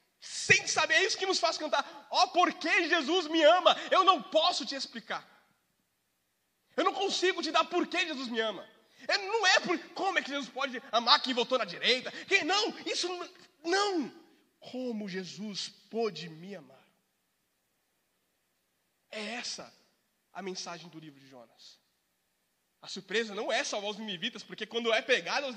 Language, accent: Portuguese, Brazilian